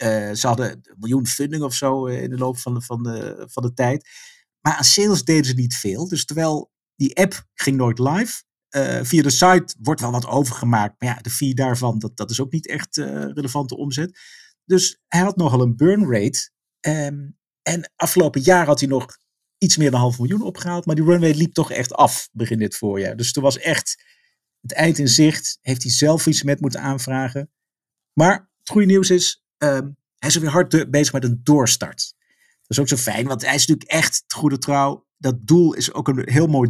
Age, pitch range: 50-69, 125-165 Hz